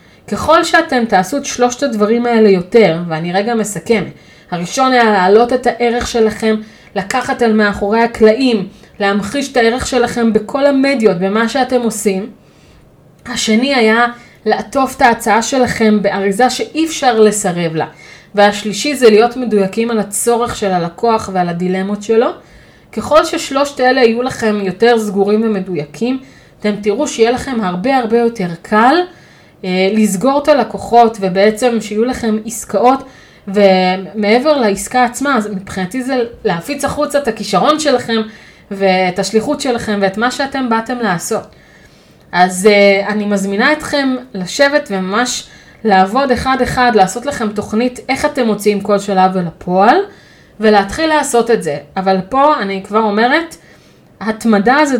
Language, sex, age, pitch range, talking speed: Hebrew, female, 30-49, 200-250 Hz, 135 wpm